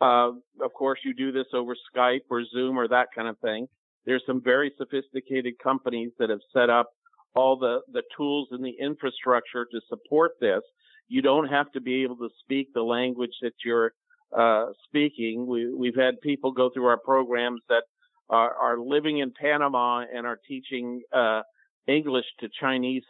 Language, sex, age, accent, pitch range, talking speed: English, male, 50-69, American, 120-145 Hz, 175 wpm